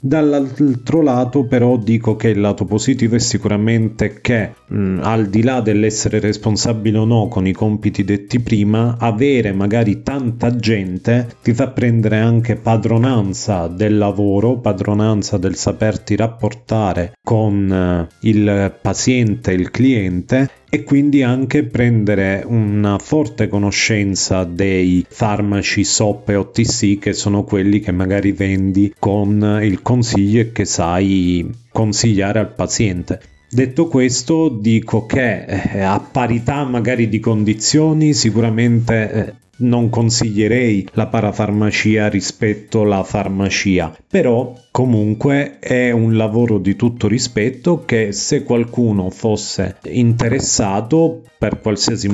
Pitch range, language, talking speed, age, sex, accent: 100-120 Hz, Italian, 120 wpm, 40-59, male, native